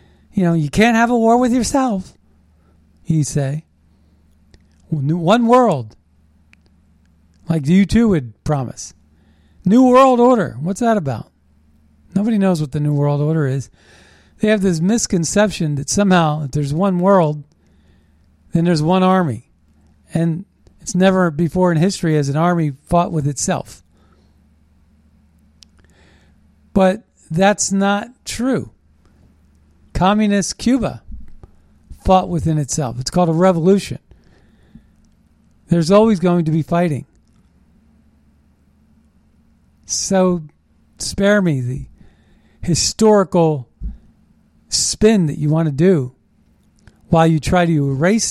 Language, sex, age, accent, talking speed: English, male, 40-59, American, 115 wpm